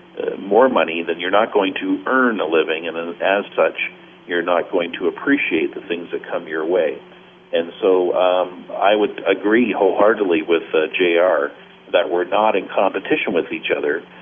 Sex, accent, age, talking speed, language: male, American, 50-69, 180 wpm, English